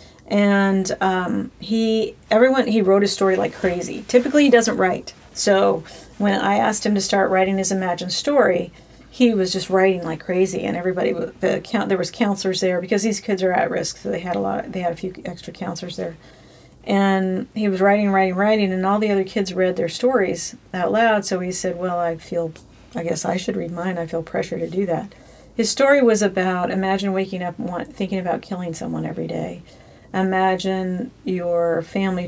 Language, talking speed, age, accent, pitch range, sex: English, 205 wpm, 40-59, American, 180-215 Hz, female